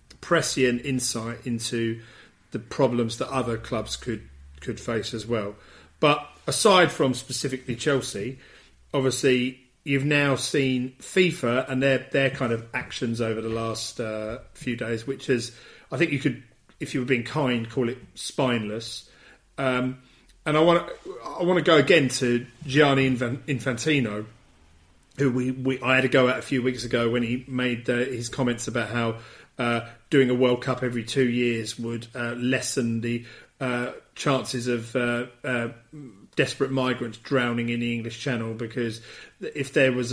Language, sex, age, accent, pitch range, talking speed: English, male, 40-59, British, 120-135 Hz, 165 wpm